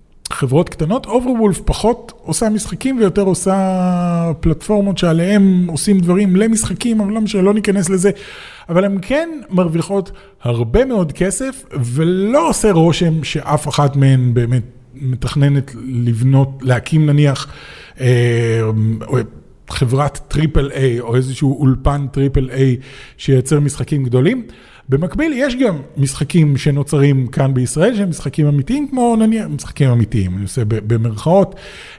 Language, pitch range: Hebrew, 135-190 Hz